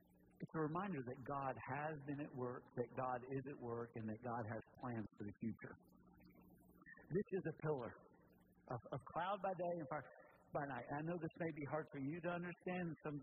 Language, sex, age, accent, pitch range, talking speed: English, male, 60-79, American, 110-150 Hz, 215 wpm